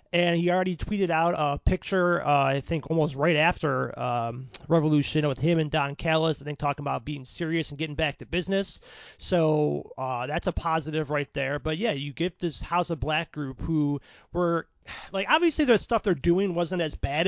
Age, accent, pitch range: 30-49, American, 145-175 Hz